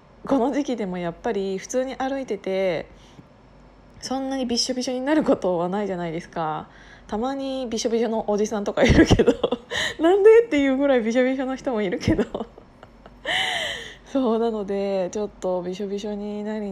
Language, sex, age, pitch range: Japanese, female, 20-39, 185-235 Hz